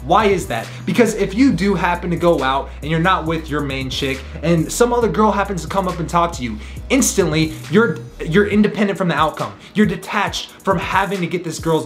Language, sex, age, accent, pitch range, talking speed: English, male, 20-39, American, 150-195 Hz, 230 wpm